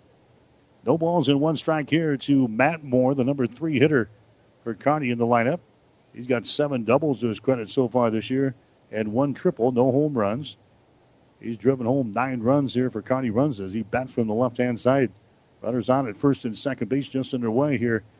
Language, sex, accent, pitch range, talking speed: English, male, American, 120-140 Hz, 205 wpm